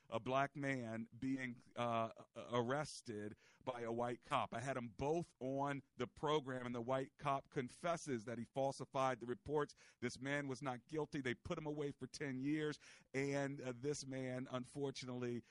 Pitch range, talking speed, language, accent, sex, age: 120-145 Hz, 170 wpm, English, American, male, 50-69